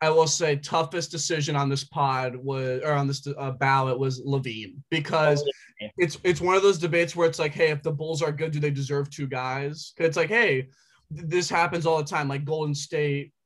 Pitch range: 140-175 Hz